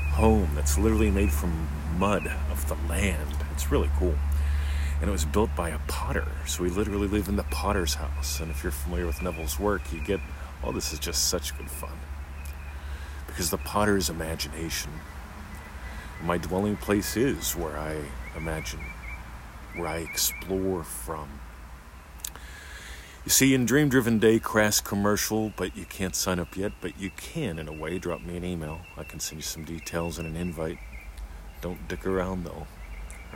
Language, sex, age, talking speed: English, male, 40-59, 175 wpm